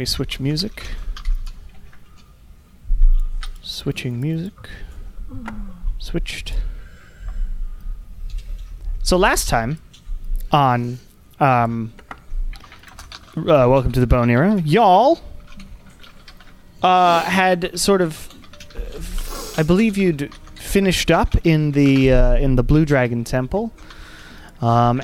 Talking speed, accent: 80 wpm, American